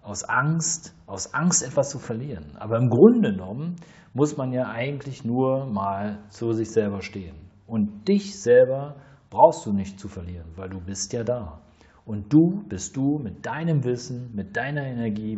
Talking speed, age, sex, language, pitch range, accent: 170 wpm, 40-59, male, German, 105-150 Hz, German